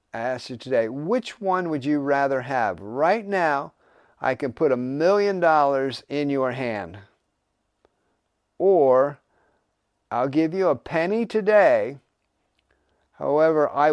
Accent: American